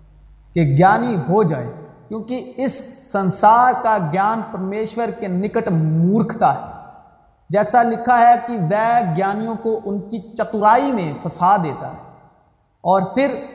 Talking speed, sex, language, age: 130 wpm, male, Urdu, 40-59